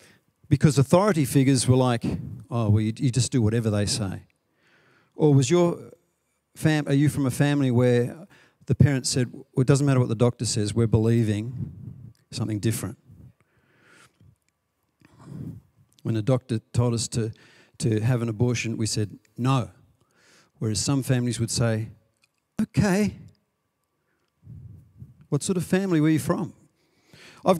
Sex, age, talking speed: male, 50-69, 145 wpm